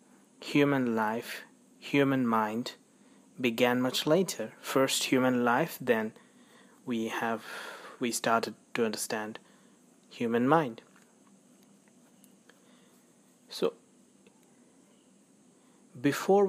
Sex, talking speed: male, 75 wpm